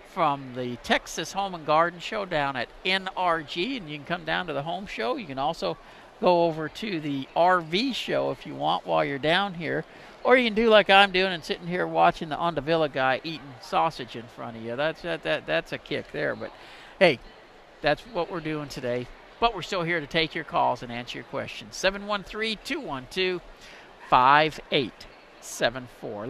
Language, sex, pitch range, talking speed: English, male, 135-185 Hz, 185 wpm